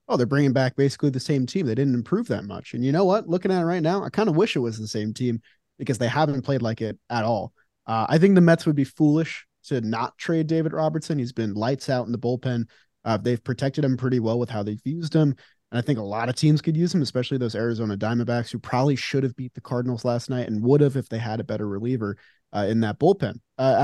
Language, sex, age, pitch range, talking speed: English, male, 20-39, 115-150 Hz, 270 wpm